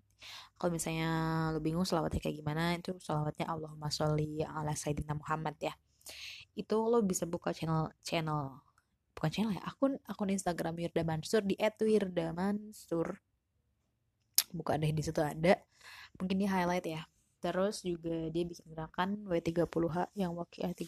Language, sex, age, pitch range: Indonesian, female, 20-39, 160-180 Hz